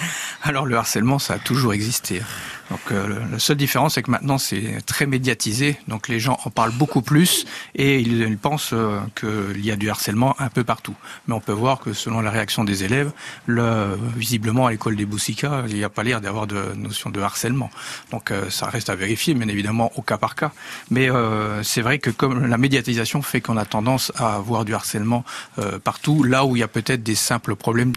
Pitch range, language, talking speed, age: 110-135 Hz, French, 225 wpm, 40-59